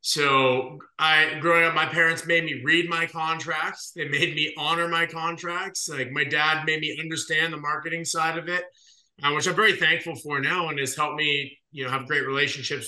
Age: 20-39